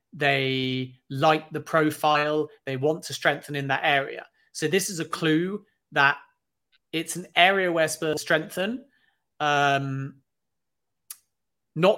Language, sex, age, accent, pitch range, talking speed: English, male, 30-49, British, 140-170 Hz, 130 wpm